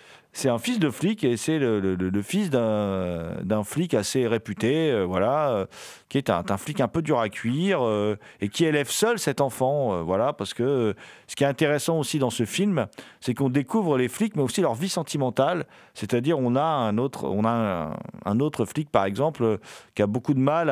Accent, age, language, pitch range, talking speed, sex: French, 40-59, French, 105-145 Hz, 220 wpm, male